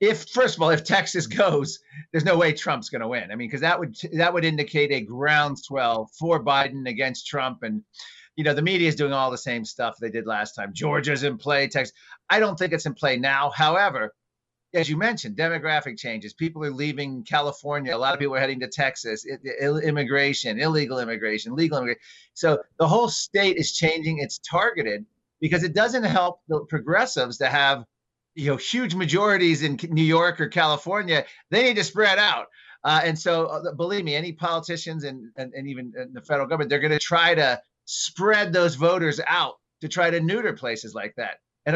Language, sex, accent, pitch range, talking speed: English, male, American, 135-170 Hz, 200 wpm